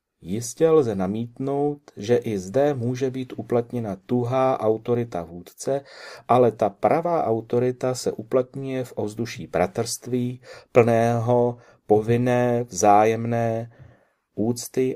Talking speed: 100 wpm